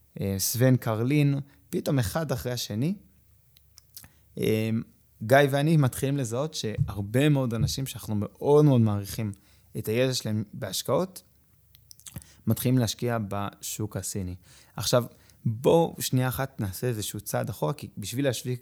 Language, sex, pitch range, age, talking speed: Hebrew, male, 105-140 Hz, 20-39, 115 wpm